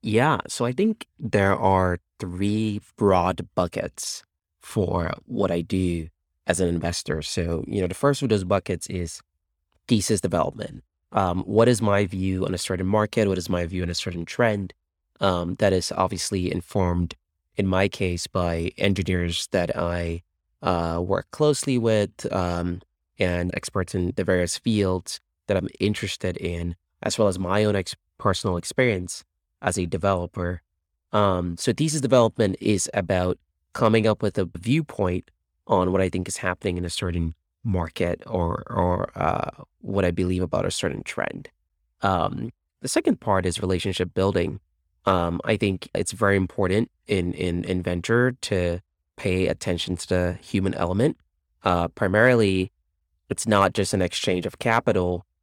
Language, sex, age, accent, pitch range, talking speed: English, male, 20-39, American, 85-100 Hz, 155 wpm